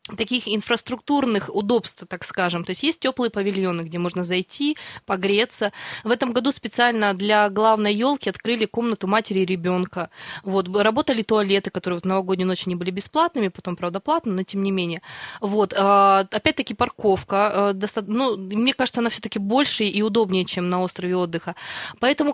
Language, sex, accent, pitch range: Russian, female, native, 195-240 Hz